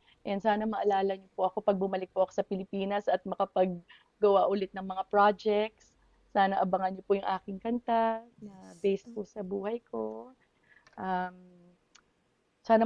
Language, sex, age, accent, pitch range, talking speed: Filipino, female, 20-39, native, 180-205 Hz, 155 wpm